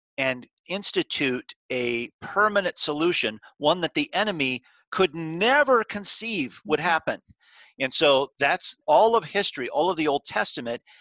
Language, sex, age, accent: English, male, 40-59, American